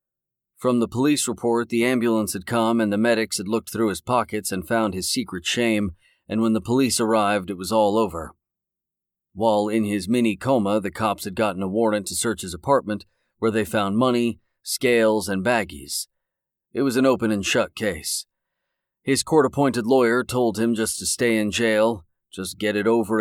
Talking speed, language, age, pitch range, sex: 180 wpm, English, 40-59, 105-120 Hz, male